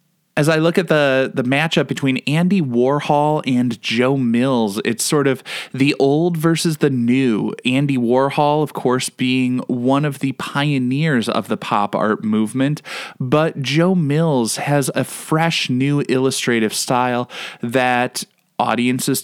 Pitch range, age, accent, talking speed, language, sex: 125-160 Hz, 20-39, American, 145 wpm, English, male